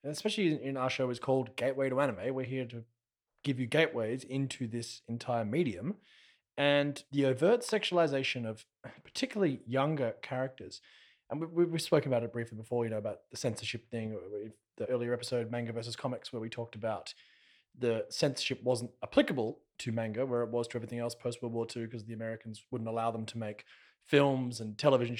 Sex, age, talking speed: male, 20-39, 180 wpm